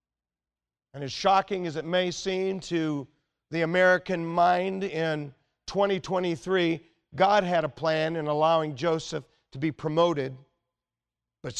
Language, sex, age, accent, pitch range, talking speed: English, male, 50-69, American, 130-170 Hz, 125 wpm